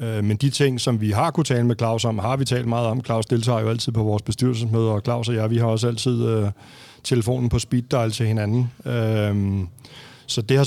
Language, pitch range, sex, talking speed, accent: Danish, 110-125 Hz, male, 235 wpm, native